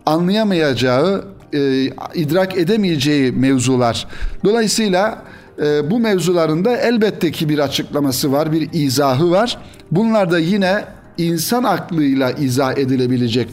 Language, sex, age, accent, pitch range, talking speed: Turkish, male, 60-79, native, 135-185 Hz, 100 wpm